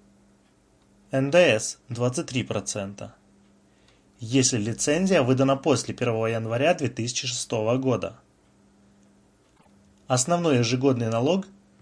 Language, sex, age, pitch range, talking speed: Russian, male, 20-39, 100-140 Hz, 70 wpm